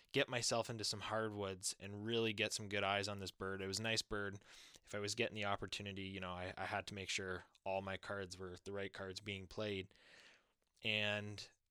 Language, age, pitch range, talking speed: English, 10-29, 100-115 Hz, 220 wpm